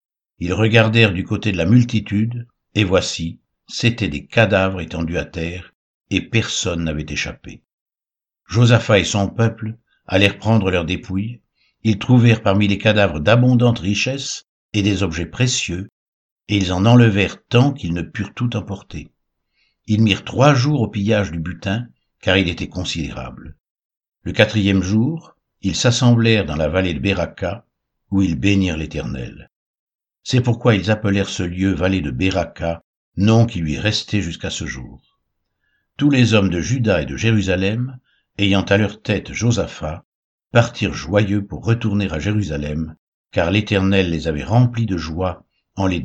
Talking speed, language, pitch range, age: 155 wpm, French, 85-115 Hz, 60-79